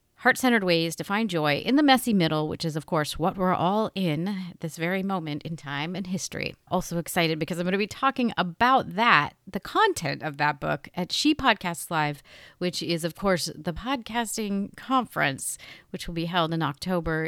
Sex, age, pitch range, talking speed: female, 40-59, 160-215 Hz, 195 wpm